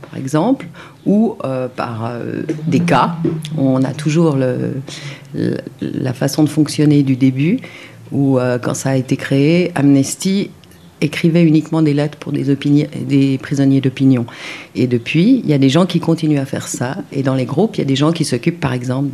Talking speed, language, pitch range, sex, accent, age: 195 wpm, French, 130-155 Hz, female, French, 50-69